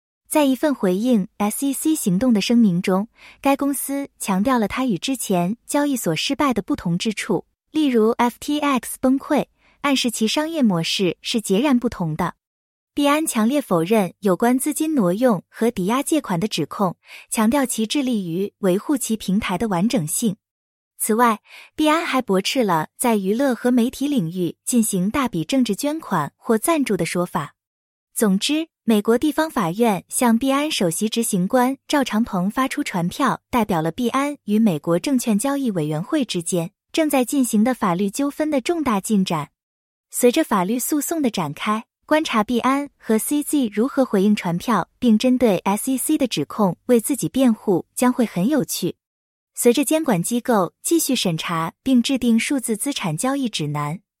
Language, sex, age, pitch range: English, female, 20-39, 195-275 Hz